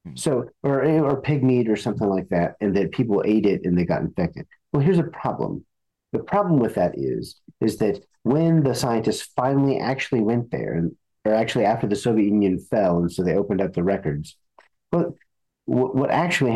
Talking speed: 190 wpm